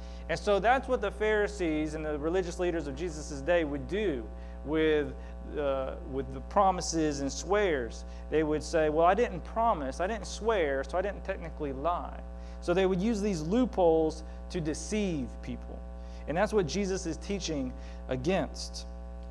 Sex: male